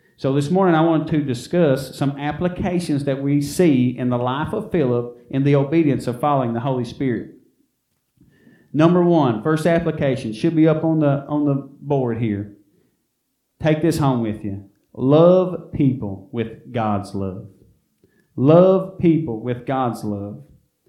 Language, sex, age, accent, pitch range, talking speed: English, male, 40-59, American, 130-180 Hz, 150 wpm